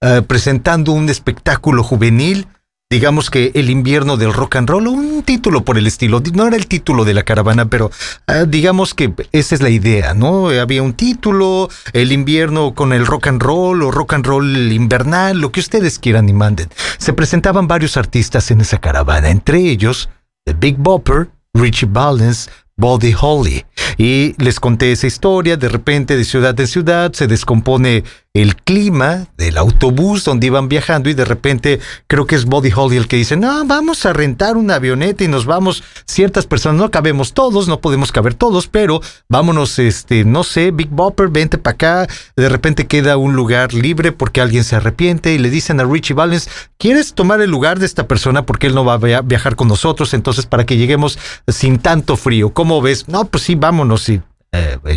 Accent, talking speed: Mexican, 190 wpm